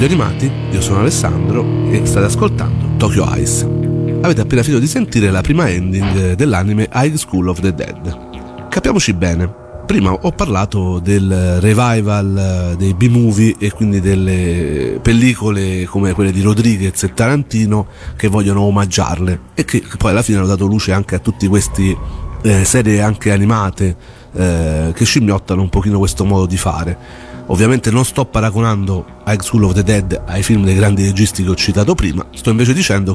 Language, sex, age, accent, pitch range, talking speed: Italian, male, 40-59, native, 95-115 Hz, 160 wpm